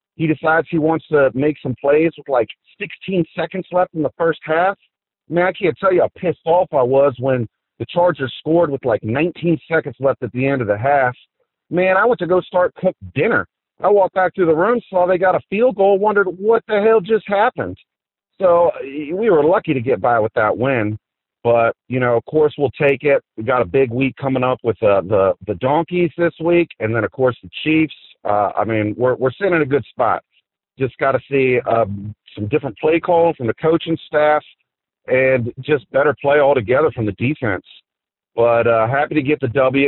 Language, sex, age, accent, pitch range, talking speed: English, male, 40-59, American, 125-160 Hz, 215 wpm